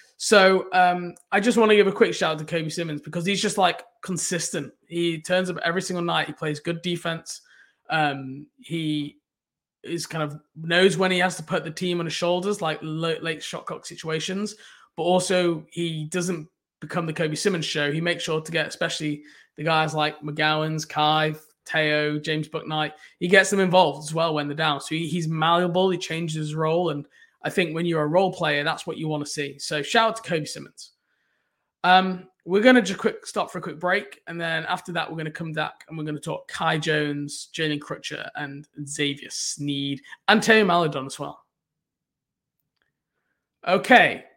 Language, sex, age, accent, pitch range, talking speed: English, male, 20-39, British, 150-180 Hz, 200 wpm